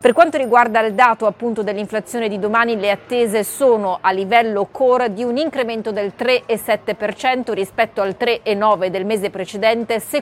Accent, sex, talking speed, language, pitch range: native, female, 160 wpm, Italian, 200-240 Hz